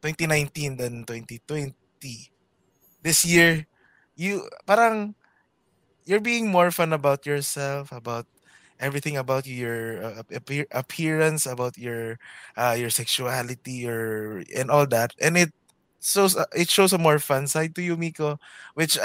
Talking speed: 130 wpm